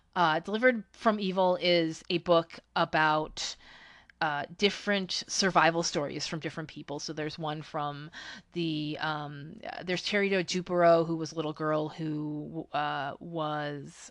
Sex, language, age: female, English, 30-49